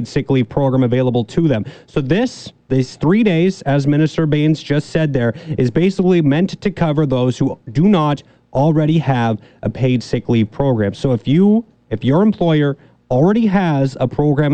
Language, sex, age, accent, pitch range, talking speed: English, male, 30-49, American, 130-160 Hz, 175 wpm